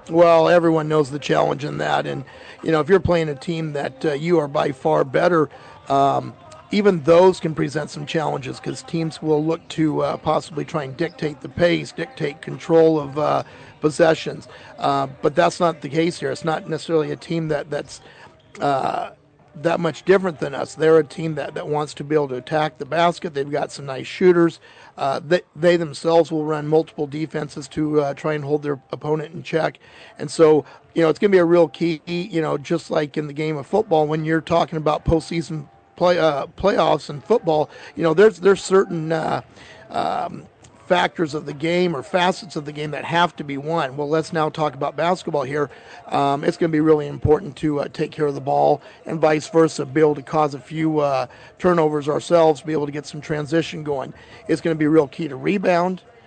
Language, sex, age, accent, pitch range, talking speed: English, male, 50-69, American, 150-170 Hz, 215 wpm